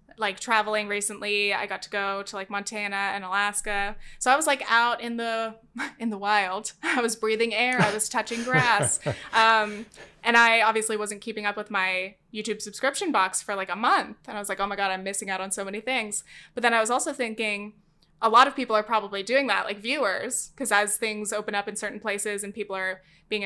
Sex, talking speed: female, 225 wpm